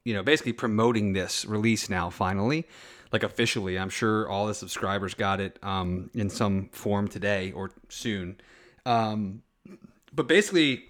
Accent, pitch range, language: American, 105-125 Hz, English